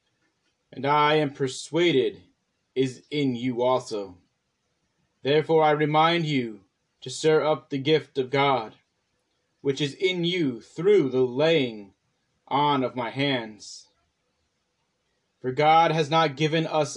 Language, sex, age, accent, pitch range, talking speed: English, male, 30-49, American, 130-160 Hz, 125 wpm